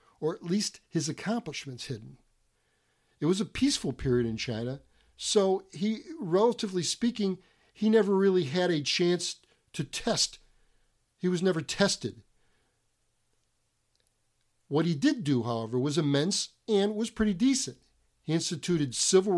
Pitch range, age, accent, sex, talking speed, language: 130-185 Hz, 50-69, American, male, 135 wpm, English